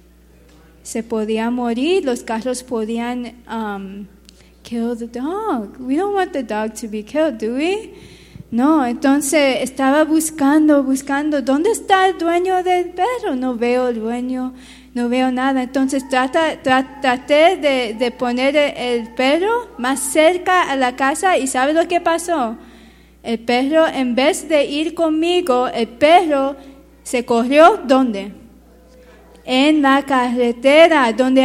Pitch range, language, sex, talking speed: 250-340 Hz, Spanish, female, 135 wpm